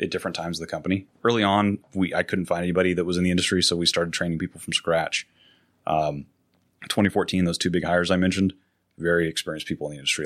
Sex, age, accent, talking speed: male, 30-49, American, 235 wpm